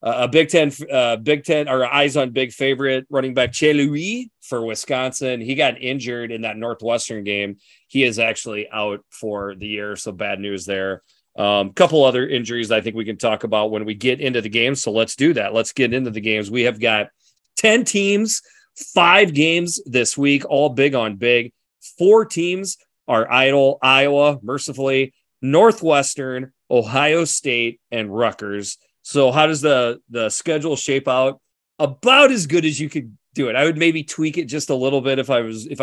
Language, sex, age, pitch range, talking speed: English, male, 30-49, 120-150 Hz, 185 wpm